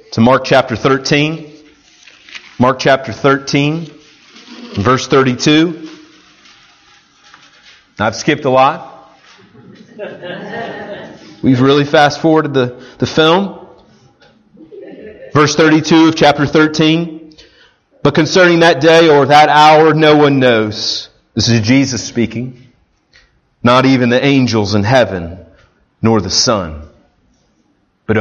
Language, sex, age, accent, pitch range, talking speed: English, male, 30-49, American, 105-160 Hz, 100 wpm